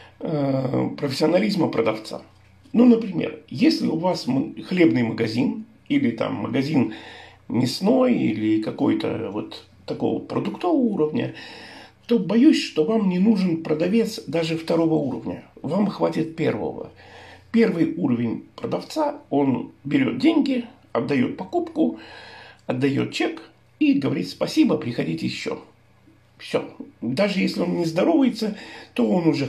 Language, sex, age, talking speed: Russian, male, 50-69, 115 wpm